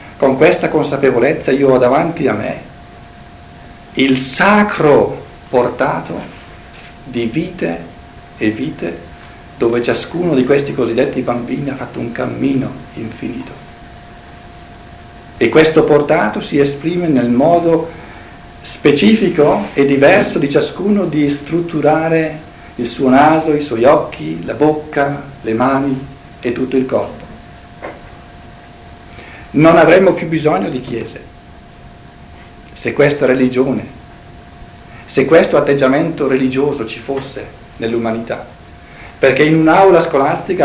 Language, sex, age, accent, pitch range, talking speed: Italian, male, 60-79, native, 130-160 Hz, 110 wpm